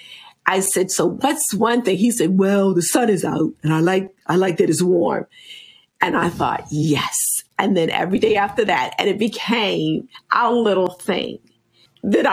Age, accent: 50-69, American